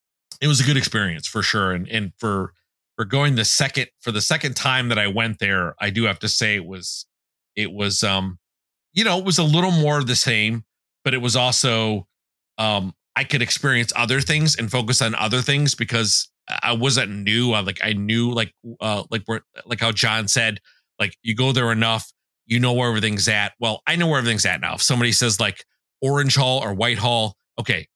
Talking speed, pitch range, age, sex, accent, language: 215 wpm, 100-130 Hz, 30-49, male, American, English